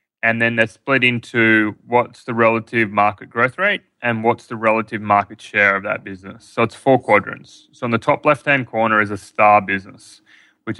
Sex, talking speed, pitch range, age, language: male, 195 wpm, 110-130 Hz, 20-39, English